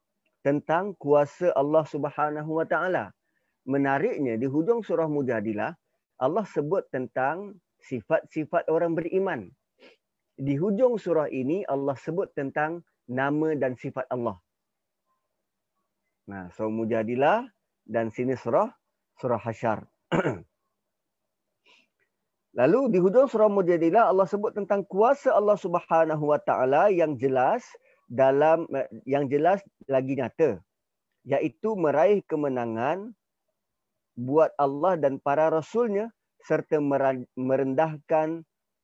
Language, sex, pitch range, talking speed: Malay, male, 135-185 Hz, 100 wpm